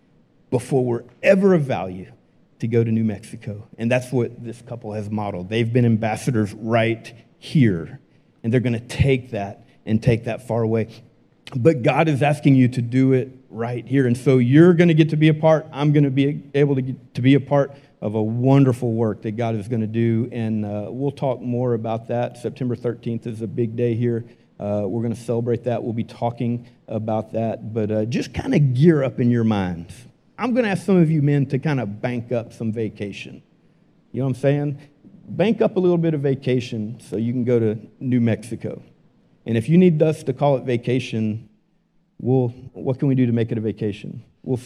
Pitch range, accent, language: 115-140 Hz, American, English